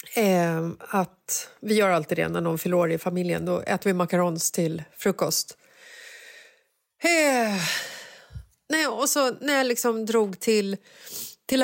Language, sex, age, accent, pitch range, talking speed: Swedish, female, 30-49, native, 200-295 Hz, 135 wpm